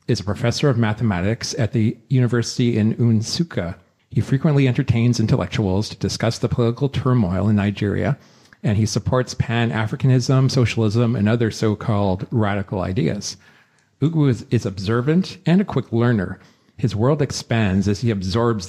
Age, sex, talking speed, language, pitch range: 50-69, male, 140 wpm, English, 105-125 Hz